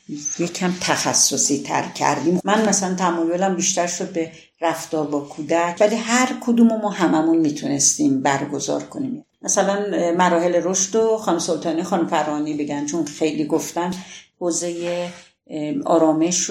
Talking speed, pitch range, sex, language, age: 130 wpm, 160-200 Hz, female, Persian, 50-69